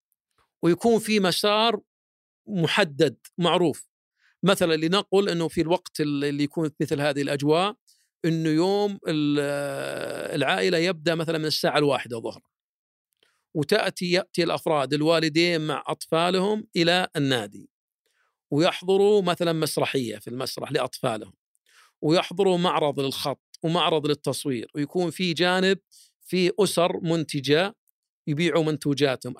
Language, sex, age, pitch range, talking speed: Arabic, male, 50-69, 145-180 Hz, 105 wpm